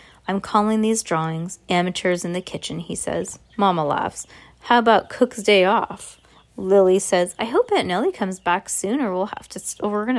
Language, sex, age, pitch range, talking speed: English, female, 20-39, 165-210 Hz, 195 wpm